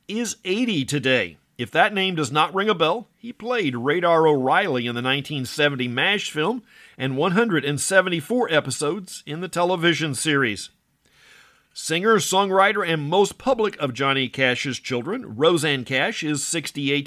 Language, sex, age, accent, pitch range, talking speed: English, male, 50-69, American, 140-195 Hz, 140 wpm